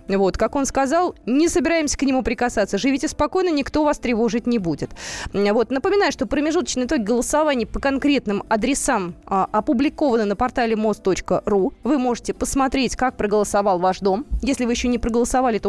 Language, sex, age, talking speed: Russian, female, 20-39, 165 wpm